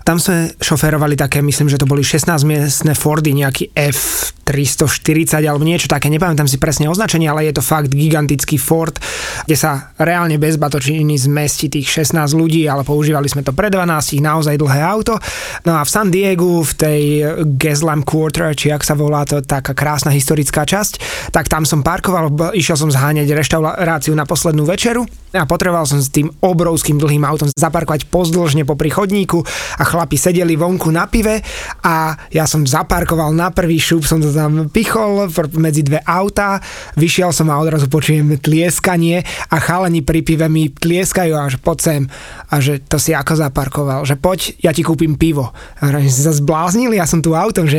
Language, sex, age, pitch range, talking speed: Slovak, male, 20-39, 150-170 Hz, 175 wpm